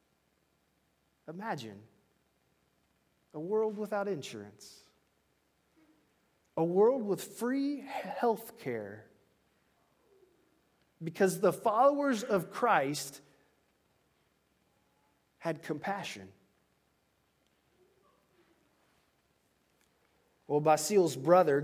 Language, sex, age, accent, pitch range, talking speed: English, male, 30-49, American, 165-215 Hz, 60 wpm